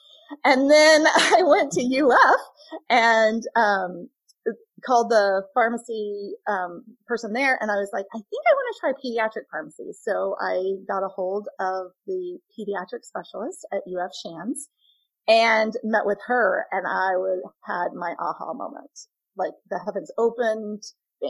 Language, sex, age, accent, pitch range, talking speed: English, female, 30-49, American, 195-300 Hz, 150 wpm